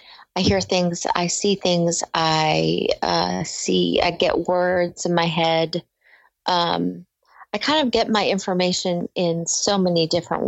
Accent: American